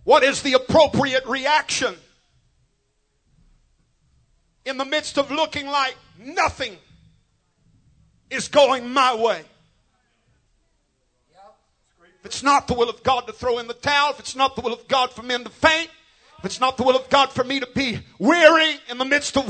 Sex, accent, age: male, American, 50-69